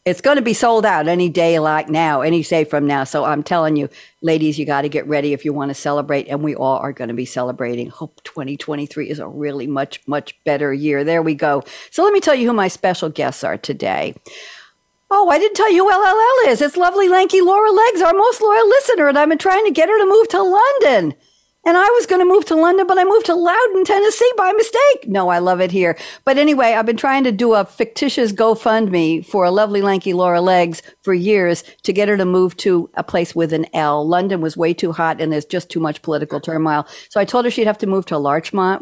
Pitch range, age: 155-255 Hz, 60-79